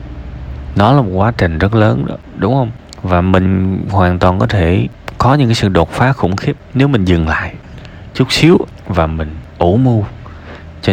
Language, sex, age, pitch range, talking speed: Vietnamese, male, 20-39, 90-125 Hz, 190 wpm